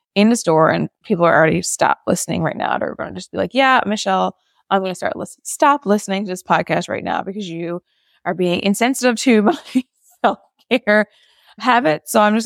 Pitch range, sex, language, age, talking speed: 175-210 Hz, female, English, 20-39, 200 wpm